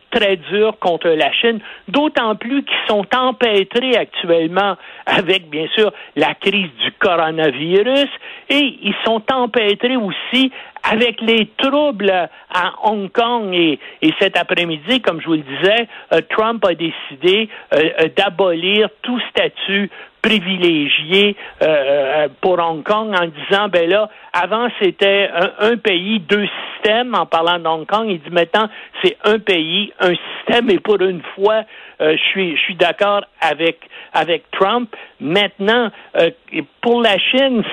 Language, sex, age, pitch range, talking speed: French, male, 60-79, 170-225 Hz, 145 wpm